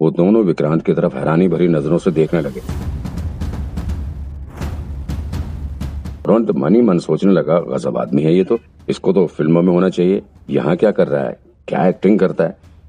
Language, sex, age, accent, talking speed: Hindi, male, 50-69, native, 90 wpm